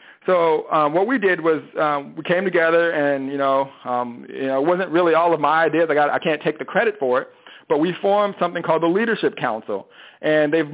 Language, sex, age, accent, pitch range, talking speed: English, male, 40-59, American, 140-165 Hz, 235 wpm